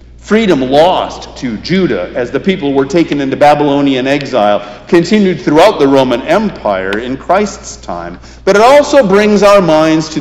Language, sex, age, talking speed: English, male, 50-69, 160 wpm